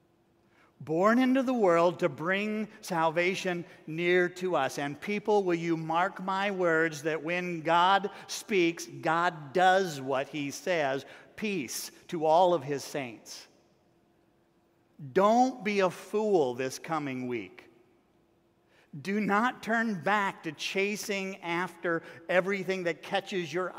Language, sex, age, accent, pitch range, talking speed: English, male, 50-69, American, 165-195 Hz, 125 wpm